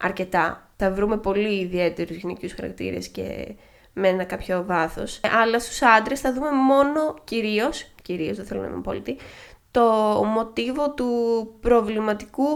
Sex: female